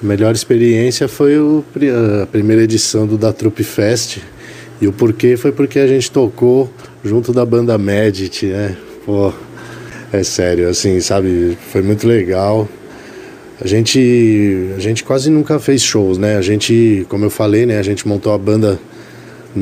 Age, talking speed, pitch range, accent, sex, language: 20-39, 160 wpm, 105-120 Hz, Brazilian, male, Portuguese